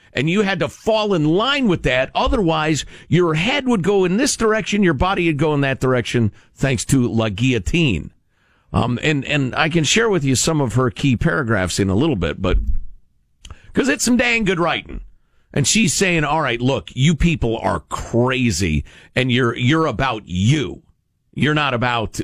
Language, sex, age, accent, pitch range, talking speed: English, male, 50-69, American, 100-155 Hz, 190 wpm